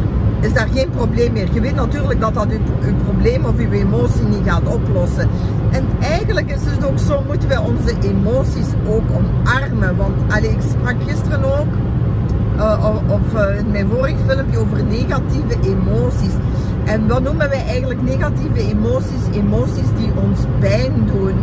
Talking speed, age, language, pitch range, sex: 160 wpm, 50-69, Dutch, 105-120 Hz, female